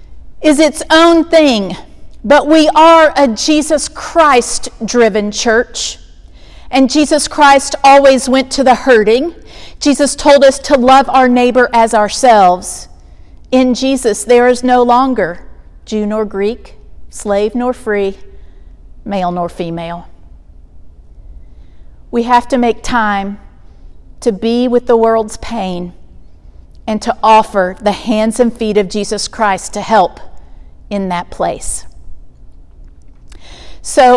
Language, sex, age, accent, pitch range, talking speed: English, female, 50-69, American, 200-265 Hz, 125 wpm